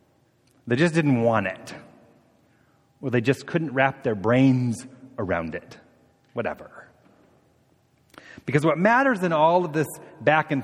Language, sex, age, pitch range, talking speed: English, male, 30-49, 125-160 Hz, 135 wpm